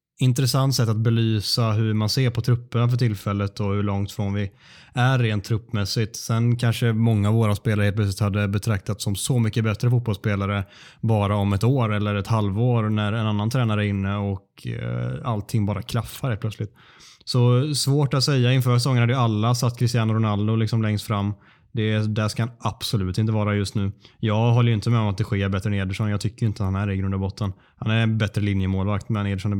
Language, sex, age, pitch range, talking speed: Swedish, male, 20-39, 105-120 Hz, 215 wpm